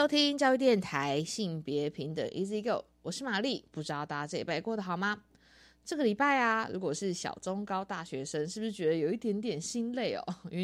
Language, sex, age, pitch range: Chinese, female, 20-39, 155-215 Hz